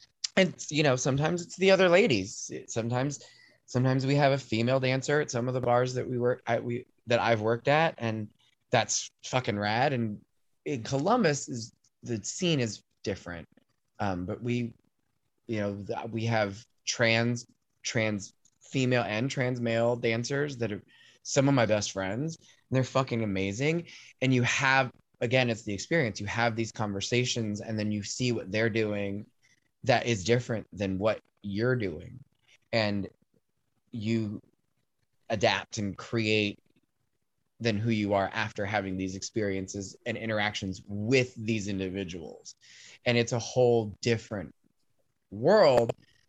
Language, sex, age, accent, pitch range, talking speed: English, male, 20-39, American, 105-125 Hz, 150 wpm